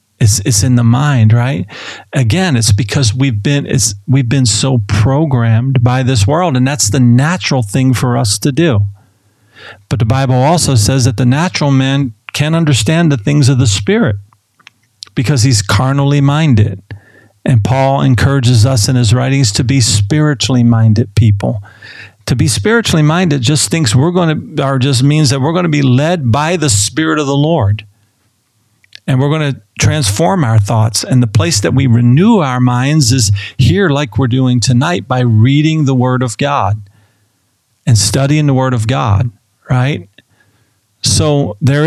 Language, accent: English, American